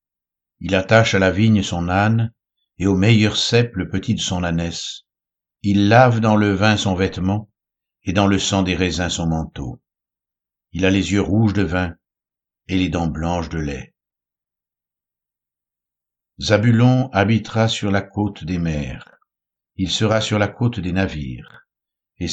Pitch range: 70-105 Hz